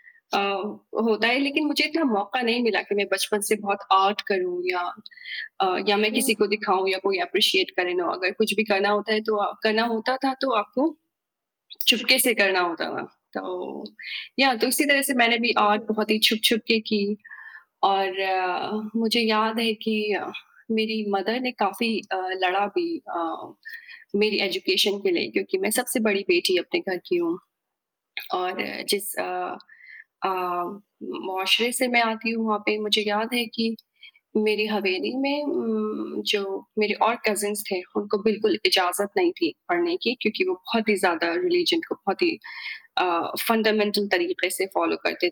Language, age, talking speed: English, 20-39, 115 wpm